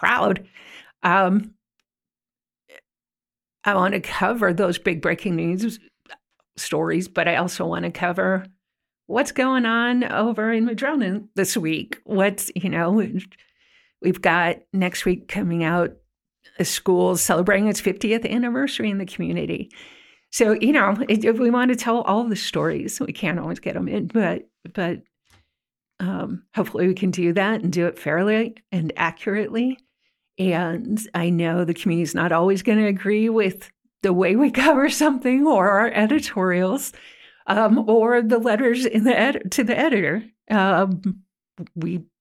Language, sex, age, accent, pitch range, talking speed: English, female, 50-69, American, 175-230 Hz, 150 wpm